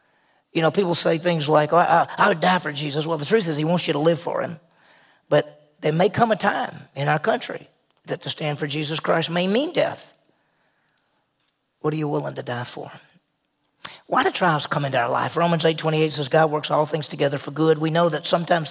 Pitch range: 160-200 Hz